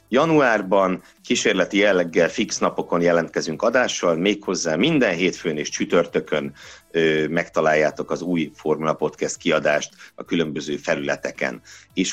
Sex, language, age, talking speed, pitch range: male, Hungarian, 60-79, 115 wpm, 80-105 Hz